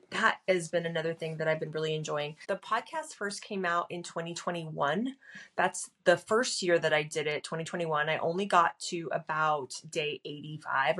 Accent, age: American, 20-39